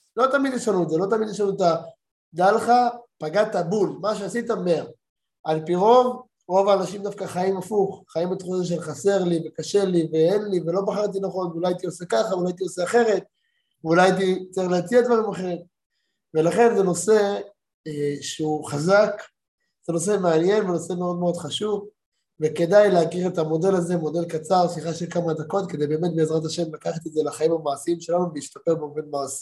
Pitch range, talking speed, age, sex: 160-200 Hz, 165 wpm, 20-39, male